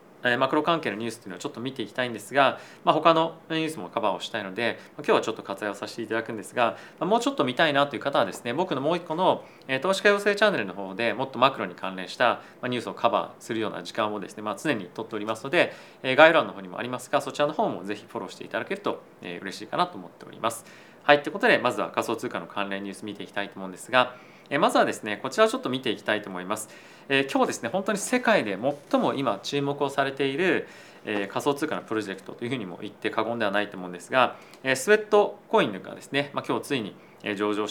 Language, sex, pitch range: Japanese, male, 105-155 Hz